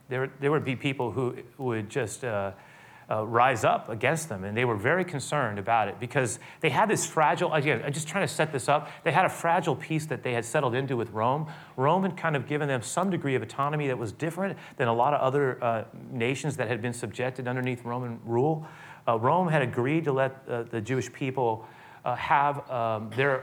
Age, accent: 30-49, American